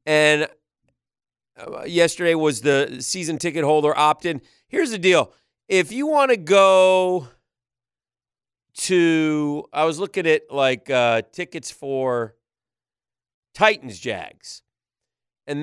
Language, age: English, 40-59